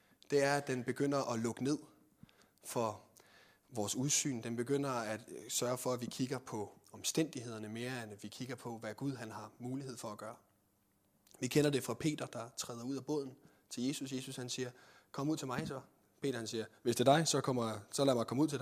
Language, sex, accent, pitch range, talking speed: Danish, male, native, 115-155 Hz, 225 wpm